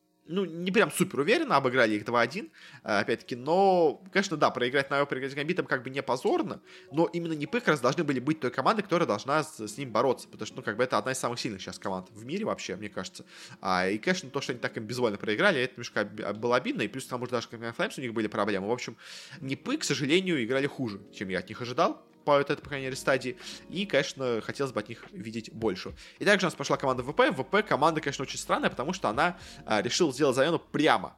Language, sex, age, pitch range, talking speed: Russian, male, 20-39, 115-160 Hz, 240 wpm